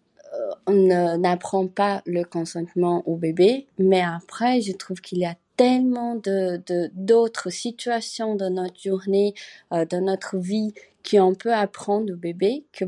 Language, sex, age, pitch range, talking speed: French, female, 30-49, 175-220 Hz, 150 wpm